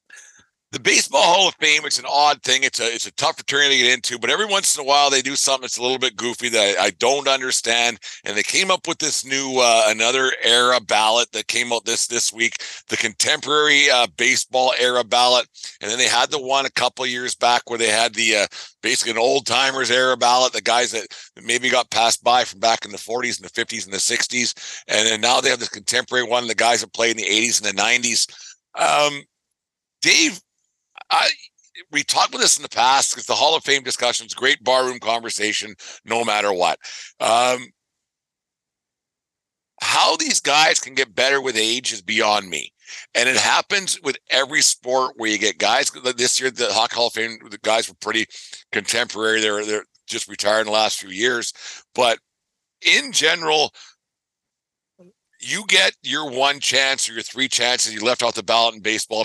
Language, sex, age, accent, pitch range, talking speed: English, male, 50-69, American, 115-135 Hz, 205 wpm